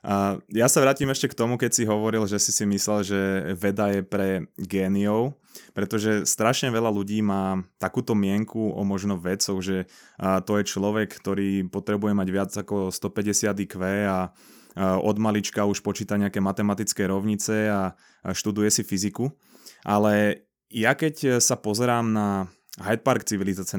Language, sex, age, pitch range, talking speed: Slovak, male, 20-39, 100-110 Hz, 150 wpm